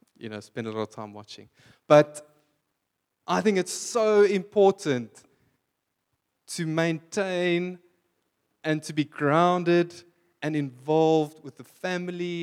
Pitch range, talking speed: 125-165 Hz, 120 wpm